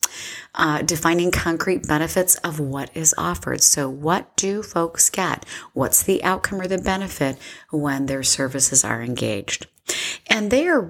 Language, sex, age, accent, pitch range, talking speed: English, female, 40-59, American, 145-195 Hz, 150 wpm